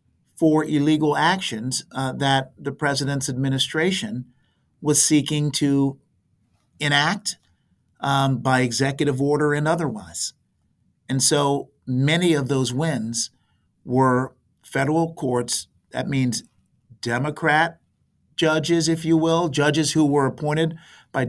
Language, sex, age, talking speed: English, male, 50-69, 110 wpm